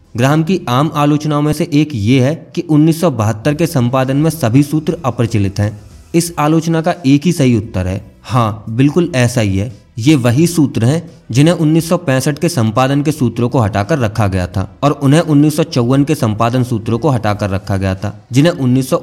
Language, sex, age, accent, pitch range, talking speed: English, male, 20-39, Indian, 110-155 Hz, 115 wpm